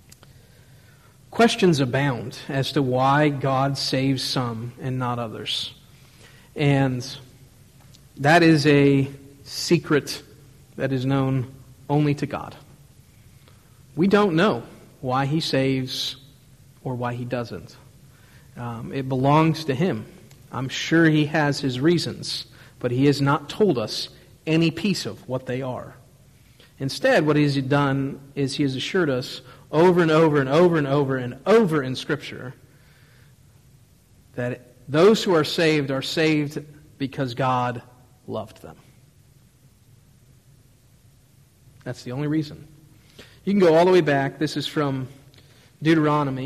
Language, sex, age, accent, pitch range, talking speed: English, male, 40-59, American, 130-150 Hz, 130 wpm